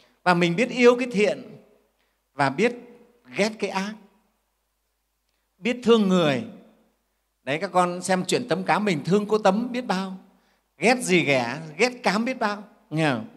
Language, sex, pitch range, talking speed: Vietnamese, male, 165-225 Hz, 155 wpm